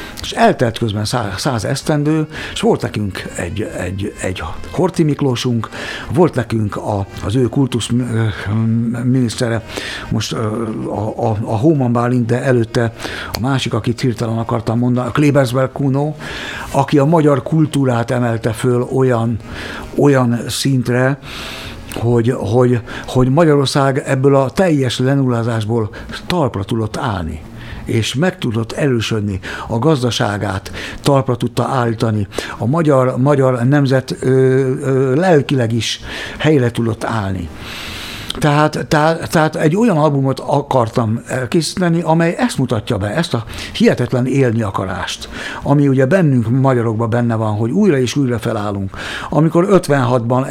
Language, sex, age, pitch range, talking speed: Hungarian, male, 60-79, 115-140 Hz, 125 wpm